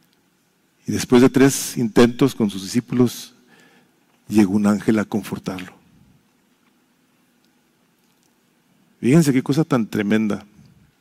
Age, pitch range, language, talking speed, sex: 40-59, 120-160 Hz, English, 100 wpm, male